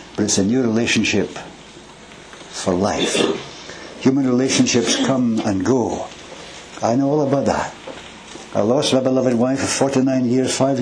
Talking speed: 140 wpm